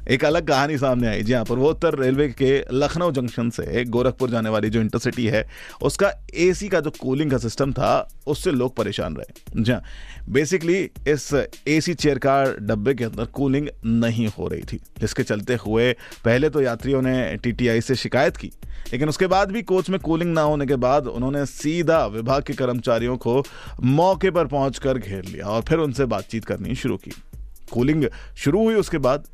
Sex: male